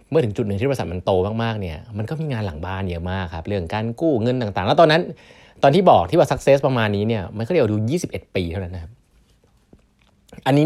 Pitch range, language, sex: 95-125 Hz, Thai, male